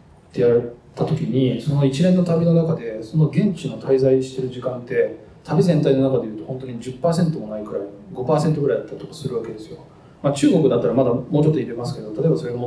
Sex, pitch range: male, 130-170 Hz